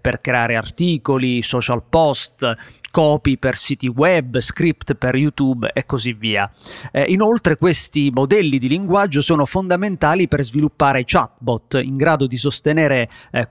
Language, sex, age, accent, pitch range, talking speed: Italian, male, 30-49, native, 130-165 Hz, 140 wpm